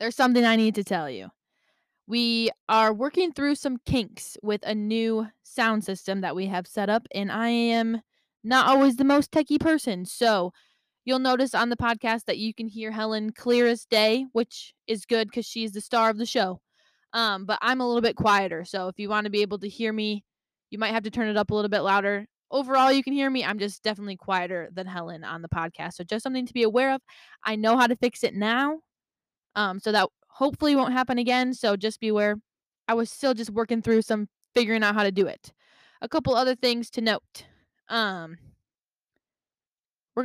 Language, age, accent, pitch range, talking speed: English, 10-29, American, 205-240 Hz, 215 wpm